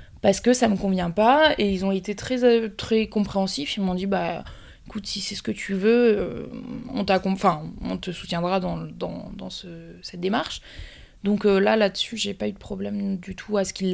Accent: French